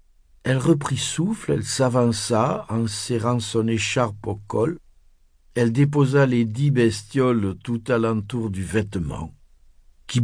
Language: French